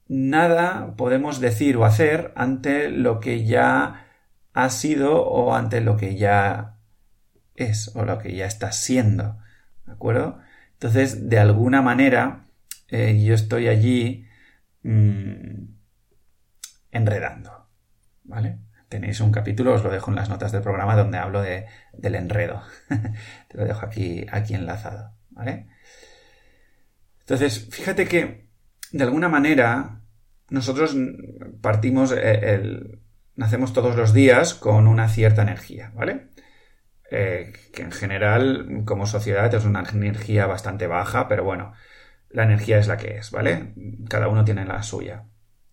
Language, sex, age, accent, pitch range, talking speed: Spanish, male, 30-49, Spanish, 100-115 Hz, 135 wpm